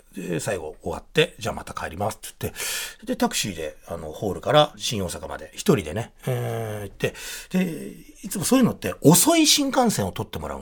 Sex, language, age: male, Japanese, 40-59